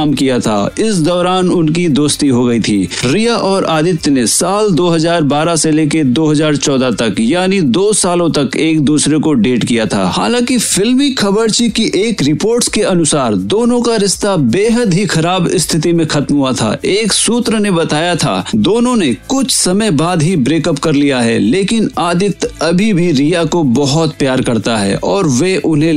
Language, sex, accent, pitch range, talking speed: Hindi, male, native, 155-215 Hz, 175 wpm